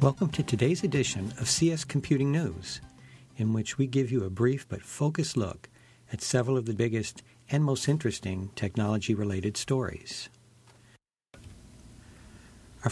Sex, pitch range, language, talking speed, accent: male, 100-130 Hz, English, 135 wpm, American